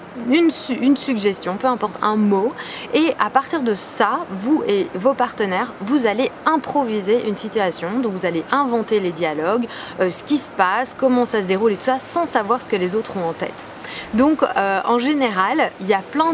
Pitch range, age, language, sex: 200-270 Hz, 20-39, French, female